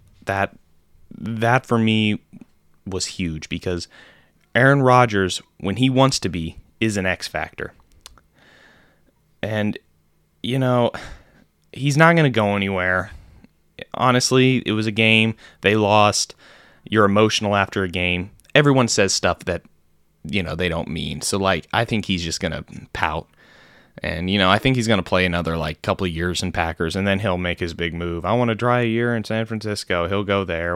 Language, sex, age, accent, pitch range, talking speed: English, male, 20-39, American, 90-120 Hz, 180 wpm